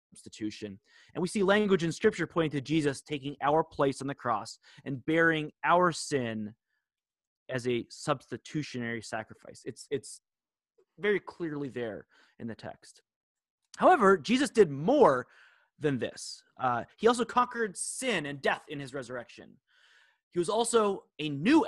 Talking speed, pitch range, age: 145 wpm, 130-195 Hz, 30-49